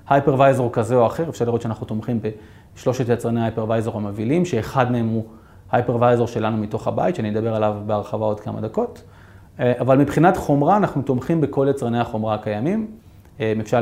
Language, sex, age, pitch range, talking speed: Hebrew, male, 30-49, 115-150 Hz, 155 wpm